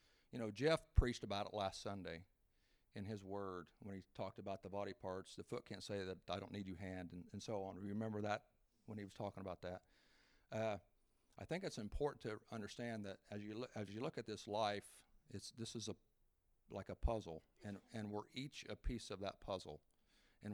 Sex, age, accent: male, 50-69, American